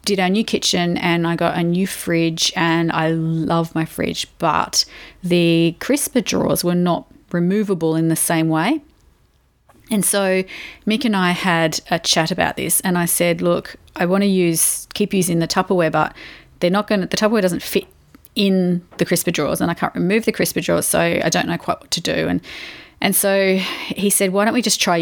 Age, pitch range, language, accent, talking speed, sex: 30-49, 170-205 Hz, English, Australian, 205 wpm, female